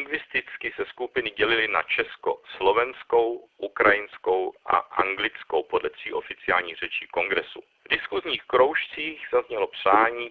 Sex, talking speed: male, 100 wpm